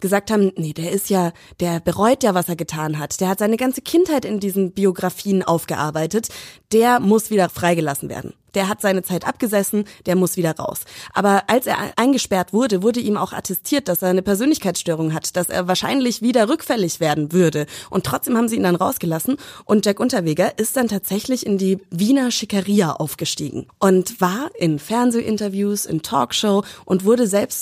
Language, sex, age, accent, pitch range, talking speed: German, female, 20-39, German, 180-220 Hz, 180 wpm